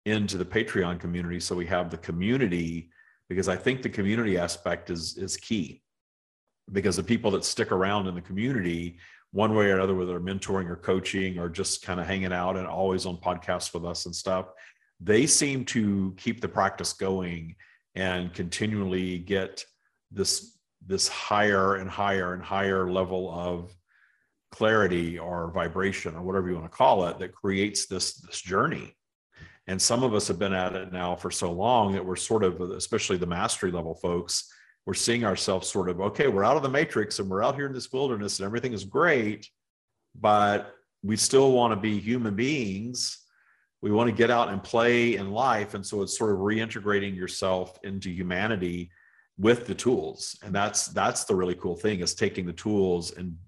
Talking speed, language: 190 wpm, English